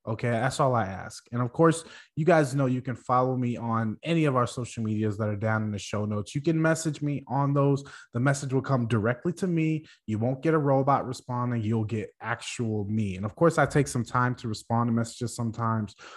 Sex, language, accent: male, English, American